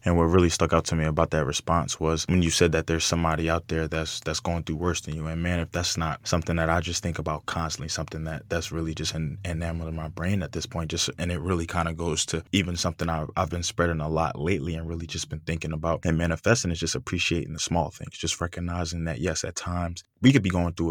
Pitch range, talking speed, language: 80-85 Hz, 265 wpm, English